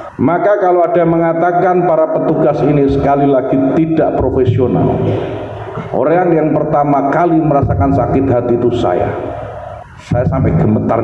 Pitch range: 130-175 Hz